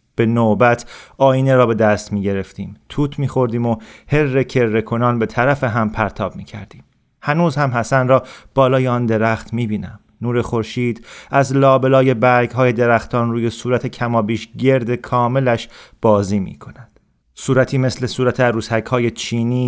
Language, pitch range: Persian, 115-130 Hz